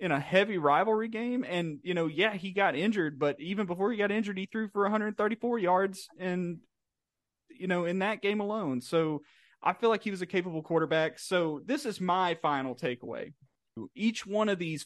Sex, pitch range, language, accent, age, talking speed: male, 145-190 Hz, English, American, 30-49, 200 wpm